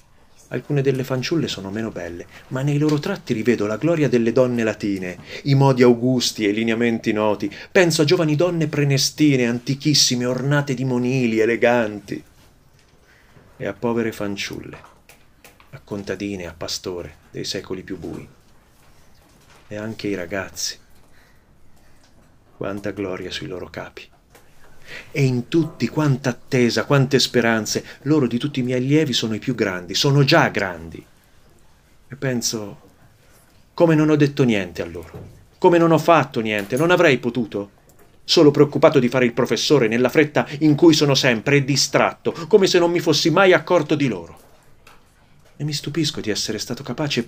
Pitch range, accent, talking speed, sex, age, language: 110-145 Hz, native, 150 wpm, male, 30-49, Italian